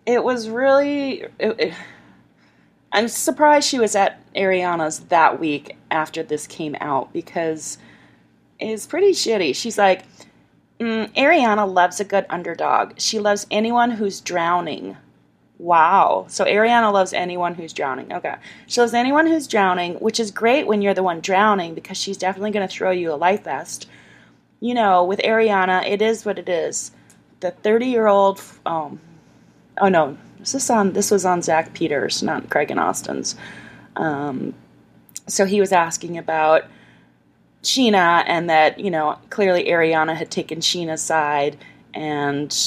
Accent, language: American, English